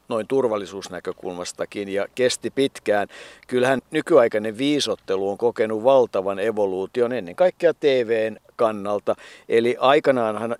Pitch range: 110-135 Hz